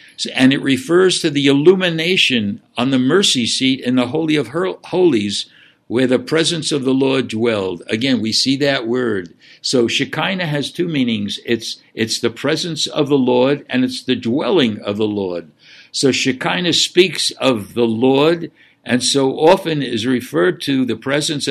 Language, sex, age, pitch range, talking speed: English, male, 60-79, 125-160 Hz, 165 wpm